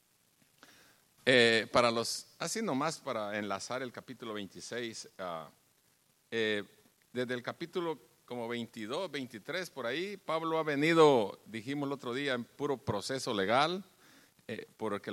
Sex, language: male, English